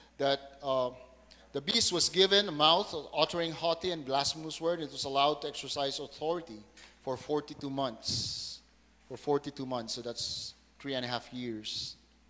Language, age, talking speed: English, 30-49, 155 wpm